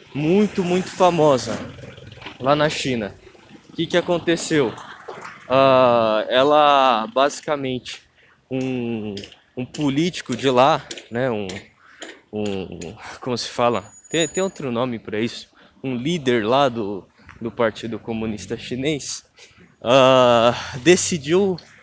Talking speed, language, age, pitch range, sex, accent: 110 wpm, Portuguese, 20-39, 120-165 Hz, male, Brazilian